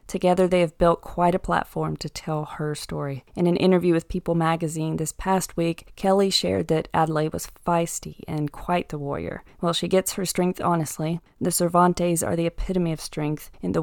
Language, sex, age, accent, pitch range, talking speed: English, female, 30-49, American, 155-180 Hz, 195 wpm